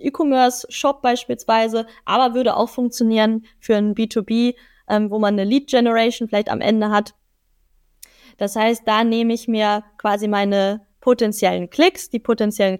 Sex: female